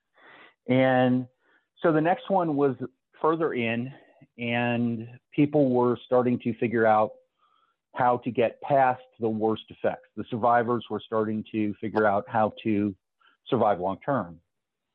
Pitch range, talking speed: 110-135 Hz, 135 wpm